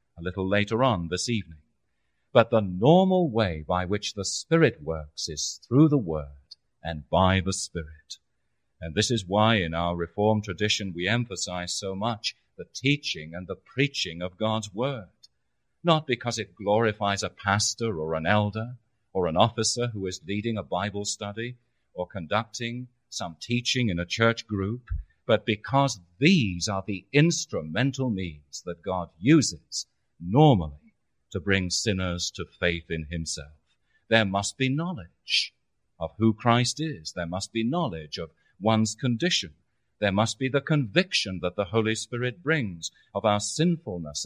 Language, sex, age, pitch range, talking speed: English, male, 40-59, 85-120 Hz, 155 wpm